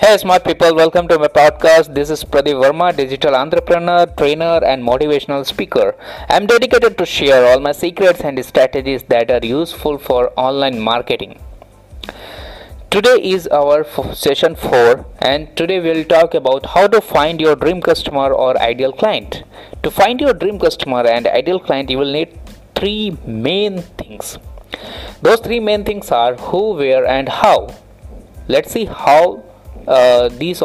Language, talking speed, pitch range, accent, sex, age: English, 160 wpm, 135-195 Hz, Indian, male, 20-39